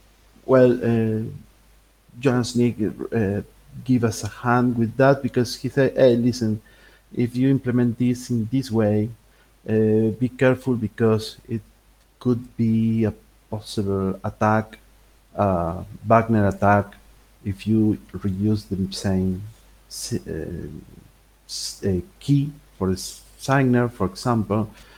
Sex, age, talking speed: male, 50-69, 120 wpm